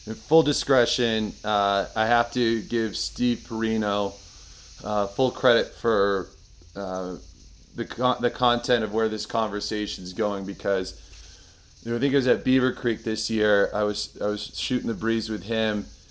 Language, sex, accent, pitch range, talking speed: English, male, American, 95-115 Hz, 170 wpm